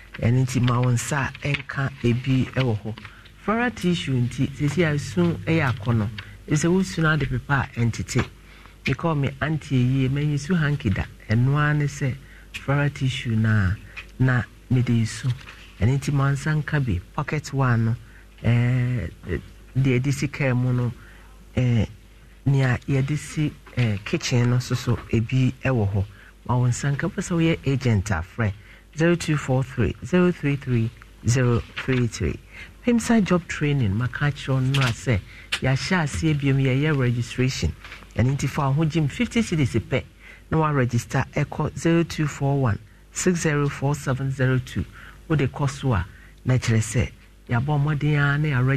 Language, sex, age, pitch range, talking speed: English, male, 60-79, 115-145 Hz, 70 wpm